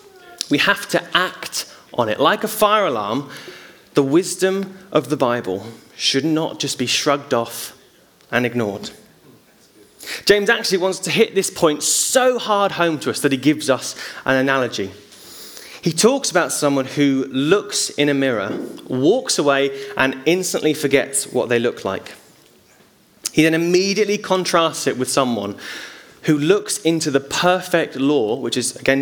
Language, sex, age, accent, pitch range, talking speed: English, male, 20-39, British, 130-175 Hz, 155 wpm